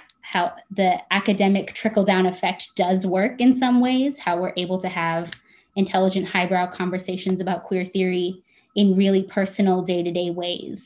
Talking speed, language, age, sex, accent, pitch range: 160 wpm, English, 20-39, female, American, 180-215 Hz